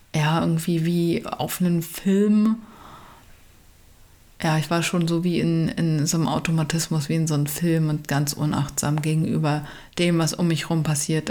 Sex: female